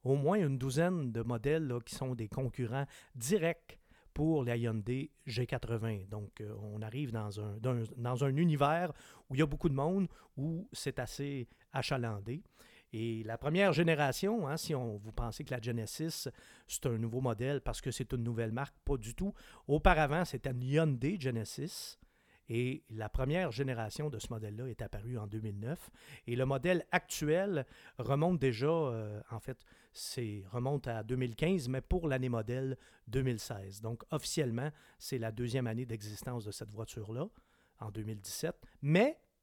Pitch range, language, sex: 115-150 Hz, French, male